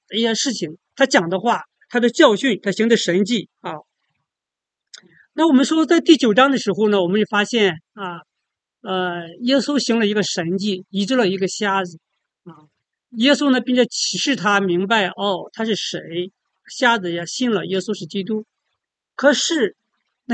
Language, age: English, 50-69